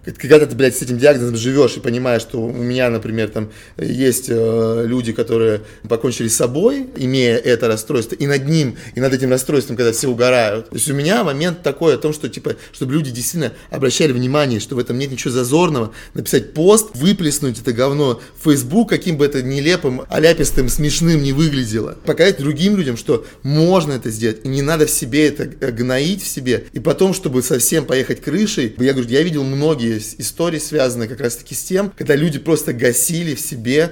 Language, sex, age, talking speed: Russian, male, 30-49, 195 wpm